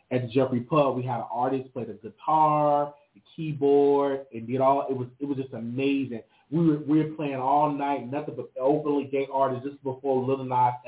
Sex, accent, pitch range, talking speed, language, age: male, American, 120-145 Hz, 210 wpm, English, 30-49